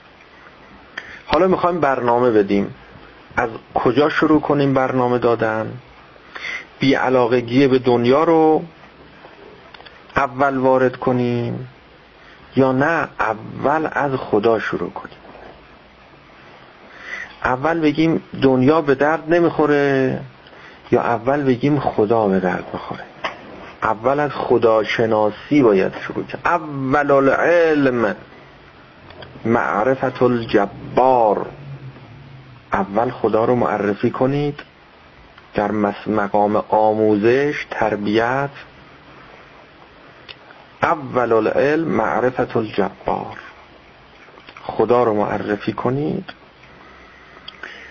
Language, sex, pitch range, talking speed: Persian, male, 110-145 Hz, 80 wpm